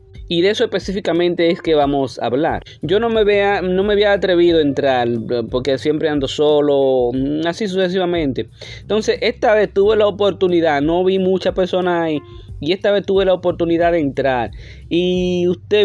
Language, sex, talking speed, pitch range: Spanish, male, 175 wpm, 115-170 Hz